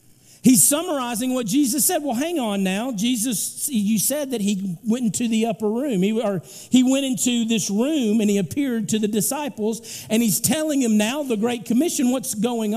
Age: 50-69